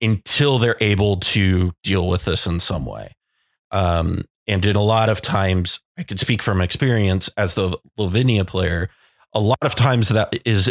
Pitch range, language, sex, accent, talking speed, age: 95-120 Hz, English, male, American, 180 wpm, 30-49